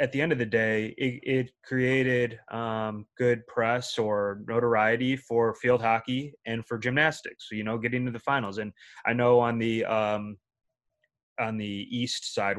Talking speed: 175 wpm